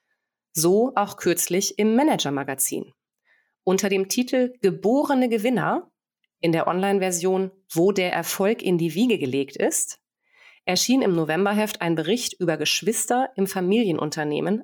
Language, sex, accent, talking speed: German, female, German, 125 wpm